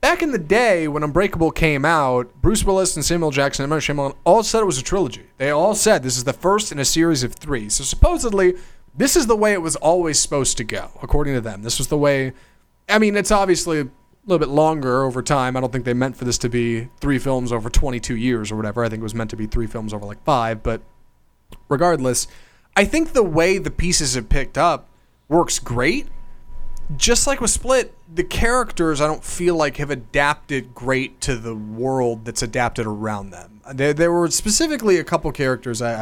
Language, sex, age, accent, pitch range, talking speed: English, male, 30-49, American, 120-170 Hz, 220 wpm